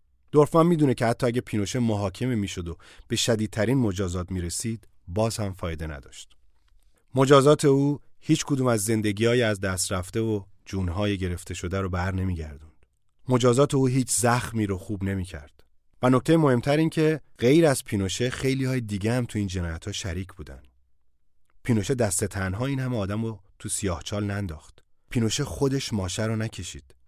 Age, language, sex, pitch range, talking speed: 30-49, Persian, male, 85-115 Hz, 150 wpm